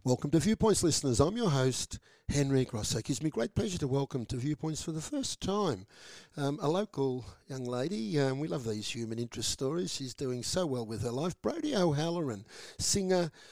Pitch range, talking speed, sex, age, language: 115-150 Hz, 195 wpm, male, 50-69, English